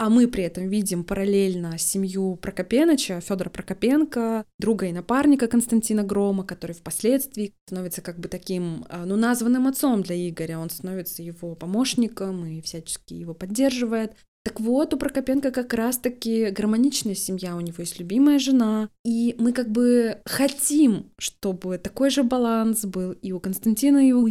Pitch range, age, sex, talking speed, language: 185-235 Hz, 20-39, female, 155 wpm, Russian